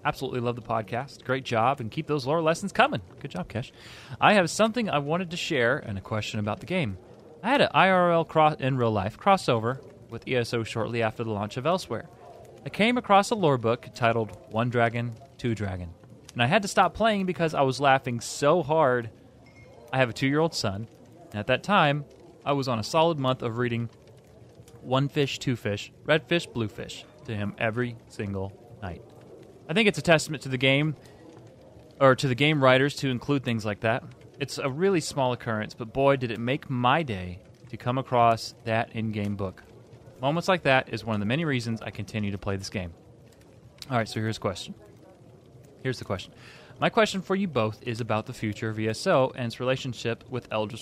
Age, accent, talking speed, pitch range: 30-49, American, 205 wpm, 115-145 Hz